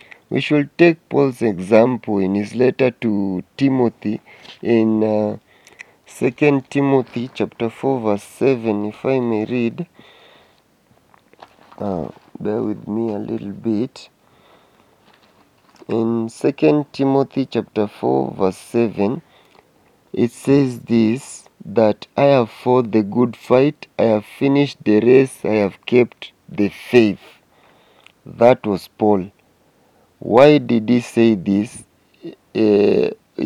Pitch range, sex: 105-130 Hz, male